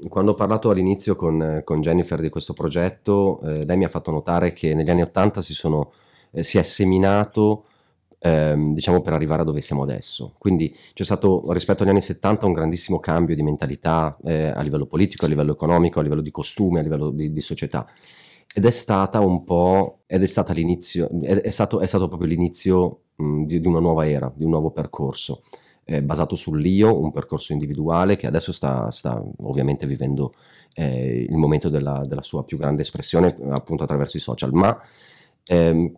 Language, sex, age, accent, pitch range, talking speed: Italian, male, 30-49, native, 75-90 Hz, 170 wpm